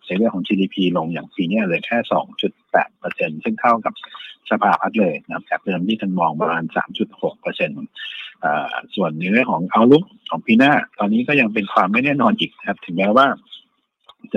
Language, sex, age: Thai, male, 60-79